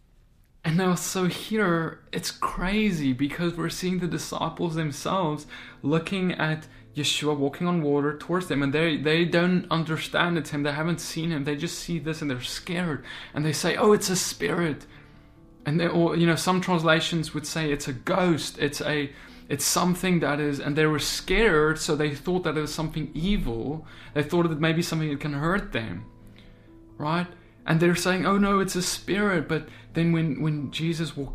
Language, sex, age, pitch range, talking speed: English, male, 20-39, 150-185 Hz, 190 wpm